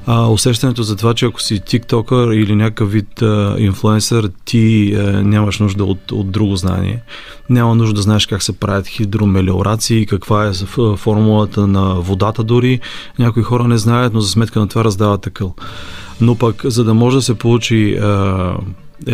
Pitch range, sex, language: 105-120 Hz, male, Bulgarian